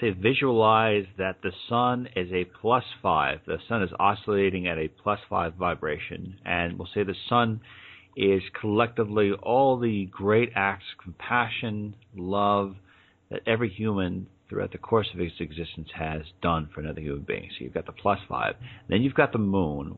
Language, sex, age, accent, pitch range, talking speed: English, male, 40-59, American, 90-110 Hz, 175 wpm